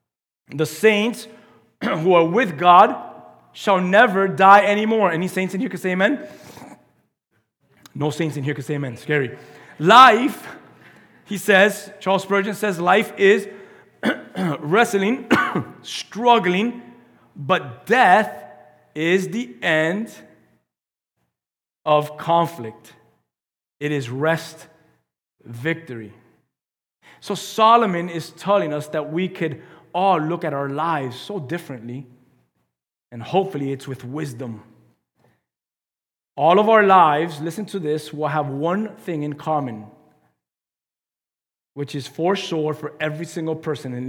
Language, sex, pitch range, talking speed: English, male, 135-185 Hz, 120 wpm